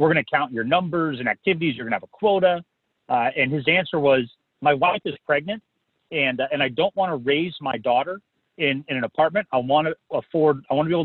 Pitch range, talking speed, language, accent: 130-170 Hz, 250 wpm, English, American